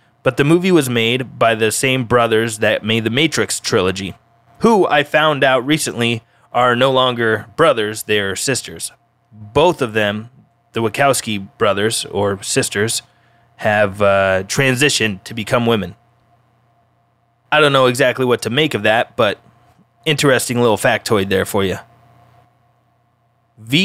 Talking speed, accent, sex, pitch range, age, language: 140 wpm, American, male, 110-135 Hz, 20-39, English